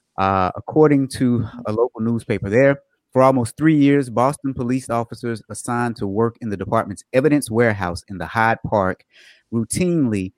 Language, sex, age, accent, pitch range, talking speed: English, male, 30-49, American, 105-140 Hz, 155 wpm